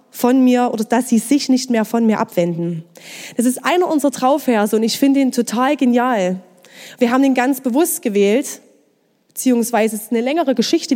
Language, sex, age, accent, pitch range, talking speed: German, female, 20-39, German, 235-300 Hz, 185 wpm